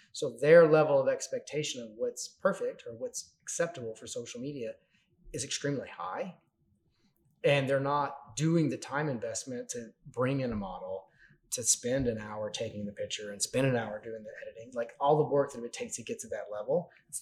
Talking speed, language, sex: 195 wpm, English, male